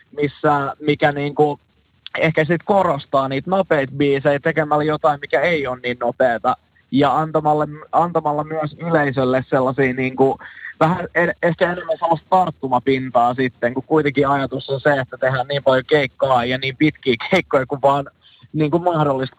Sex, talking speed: male, 145 wpm